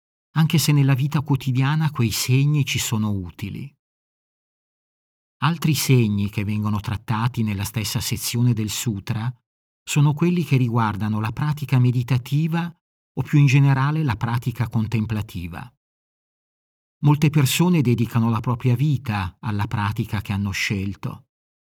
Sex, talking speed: male, 125 wpm